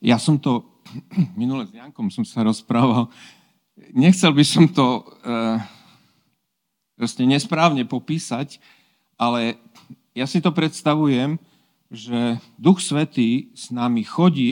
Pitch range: 120-185 Hz